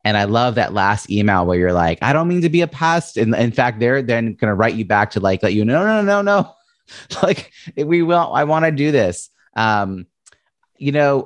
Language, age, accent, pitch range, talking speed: English, 30-49, American, 90-120 Hz, 255 wpm